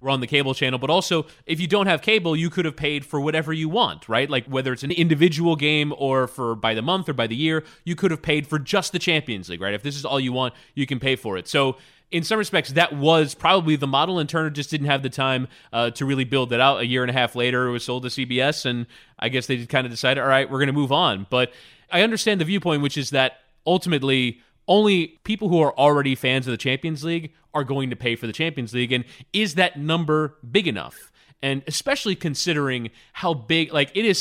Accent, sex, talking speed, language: American, male, 255 wpm, English